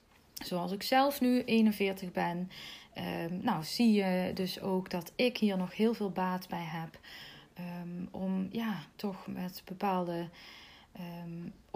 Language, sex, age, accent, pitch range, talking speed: Dutch, female, 20-39, Dutch, 185-230 Hz, 145 wpm